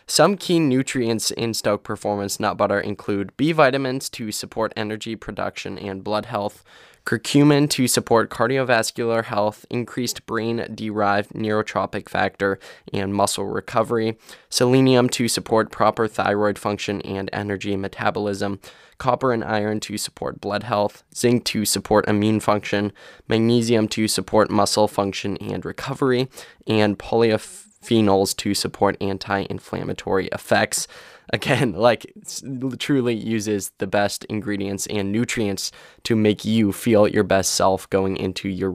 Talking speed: 130 wpm